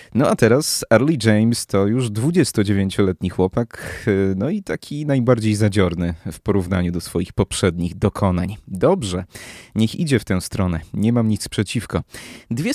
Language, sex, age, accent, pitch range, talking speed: Polish, male, 30-49, native, 100-120 Hz, 145 wpm